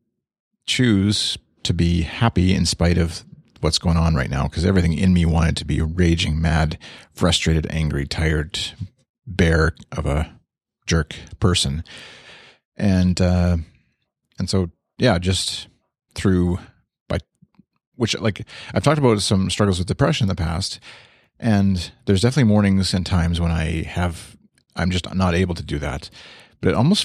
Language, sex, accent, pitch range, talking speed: English, male, American, 80-100 Hz, 150 wpm